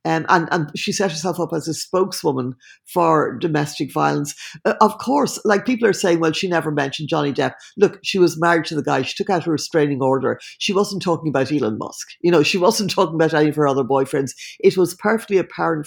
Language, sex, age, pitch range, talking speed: English, female, 60-79, 150-180 Hz, 225 wpm